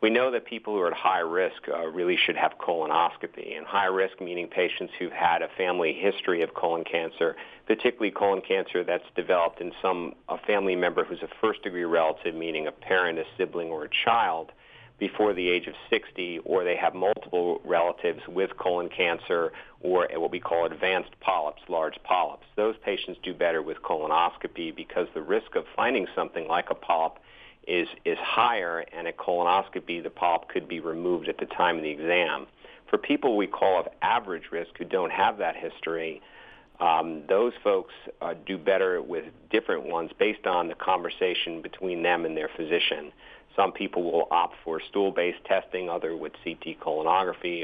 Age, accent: 50-69, American